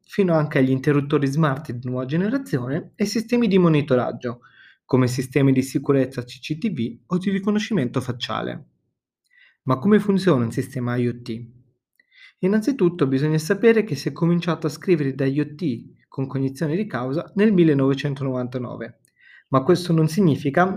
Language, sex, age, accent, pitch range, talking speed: Italian, male, 30-49, native, 130-185 Hz, 140 wpm